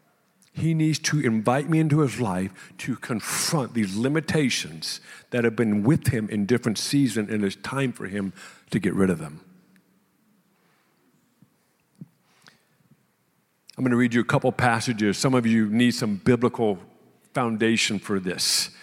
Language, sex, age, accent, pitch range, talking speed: English, male, 50-69, American, 115-150 Hz, 150 wpm